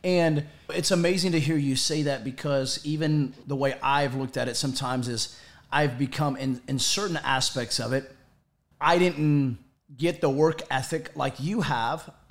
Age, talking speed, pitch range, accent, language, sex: 30-49, 170 wpm, 140-170 Hz, American, English, male